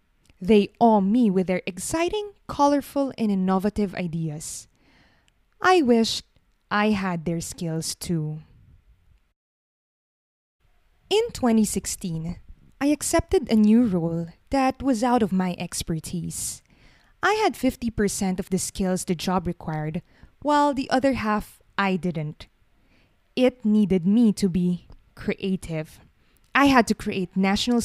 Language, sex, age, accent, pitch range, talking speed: English, female, 20-39, Filipino, 175-250 Hz, 120 wpm